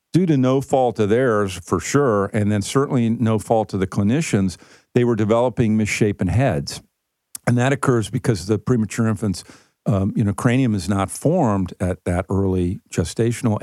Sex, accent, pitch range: male, American, 95-120 Hz